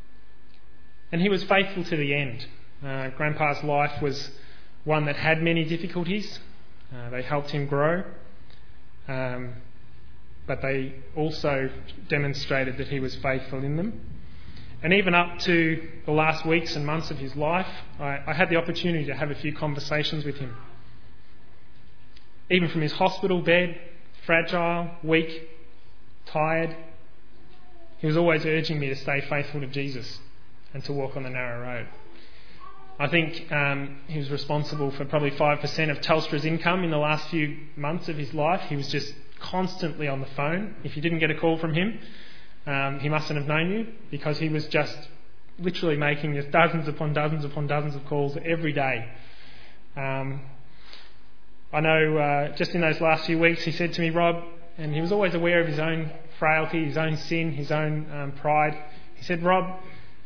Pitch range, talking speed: 140-165 Hz, 170 wpm